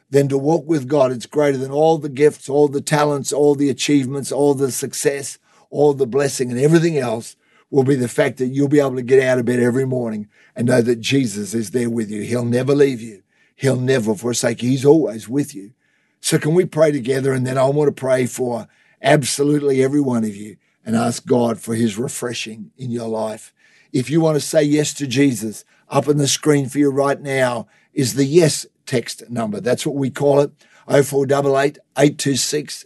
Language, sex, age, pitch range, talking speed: English, male, 50-69, 120-145 Hz, 210 wpm